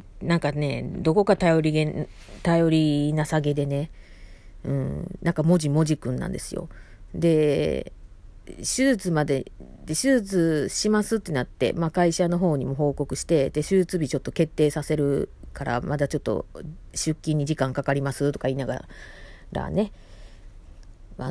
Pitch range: 120-175 Hz